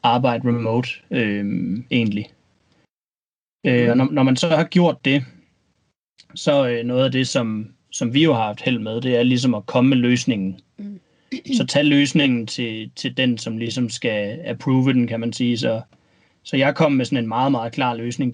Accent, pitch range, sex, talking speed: native, 120-140 Hz, male, 195 wpm